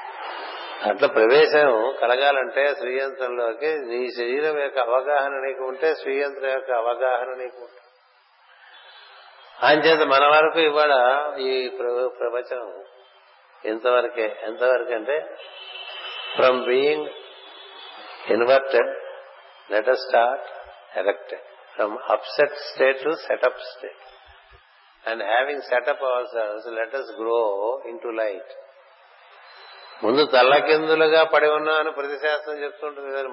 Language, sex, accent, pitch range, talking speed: Telugu, male, native, 125-150 Hz, 90 wpm